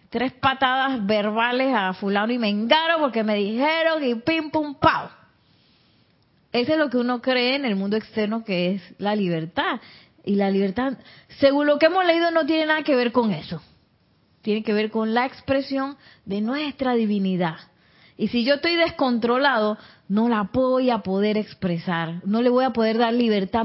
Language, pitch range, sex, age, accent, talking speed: Spanish, 195-270 Hz, female, 30-49, American, 180 wpm